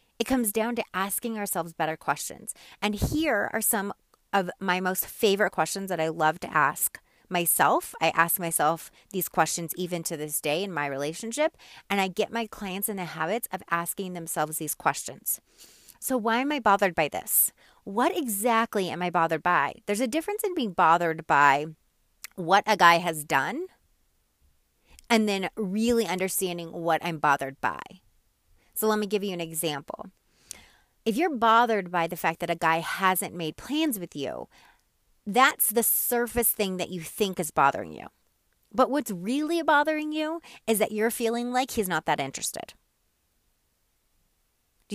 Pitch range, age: 165-240 Hz, 30-49